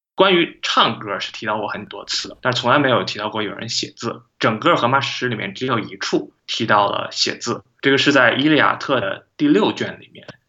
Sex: male